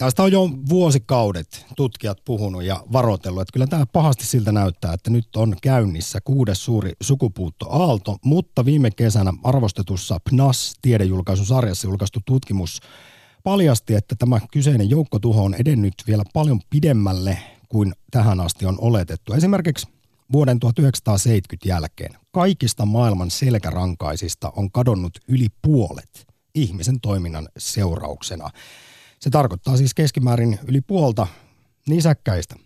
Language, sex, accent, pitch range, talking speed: Finnish, male, native, 100-135 Hz, 120 wpm